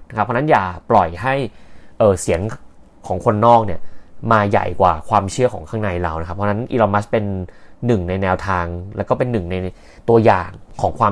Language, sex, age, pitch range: Thai, male, 30-49, 95-130 Hz